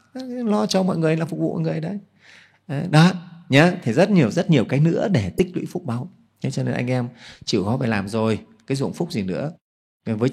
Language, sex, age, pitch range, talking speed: Vietnamese, male, 30-49, 115-170 Hz, 230 wpm